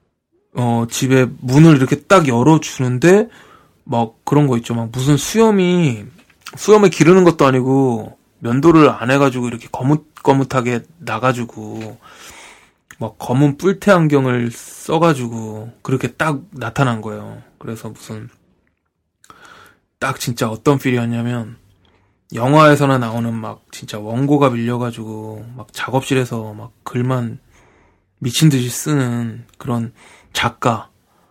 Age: 20-39